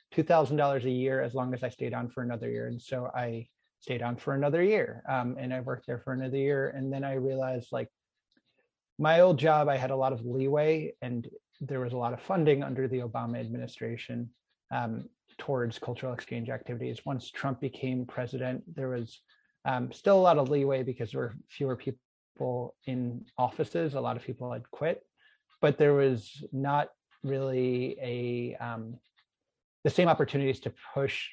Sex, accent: male, American